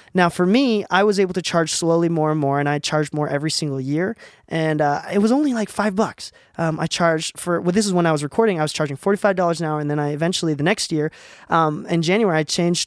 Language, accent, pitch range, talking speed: English, American, 150-195 Hz, 260 wpm